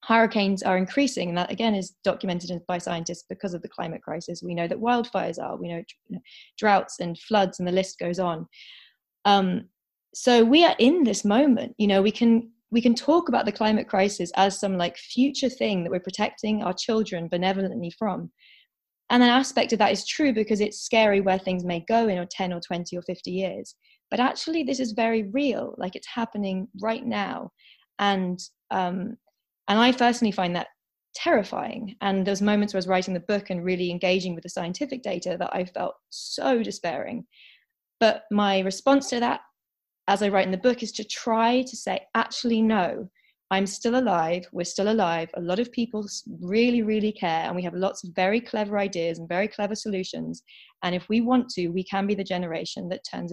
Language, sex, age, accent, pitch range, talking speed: English, female, 20-39, British, 180-230 Hz, 200 wpm